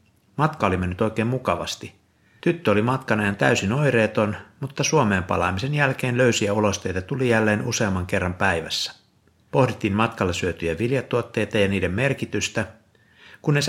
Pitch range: 95-115 Hz